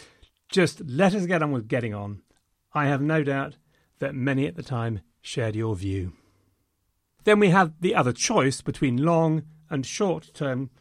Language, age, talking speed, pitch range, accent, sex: English, 40-59, 170 wpm, 120-160 Hz, British, male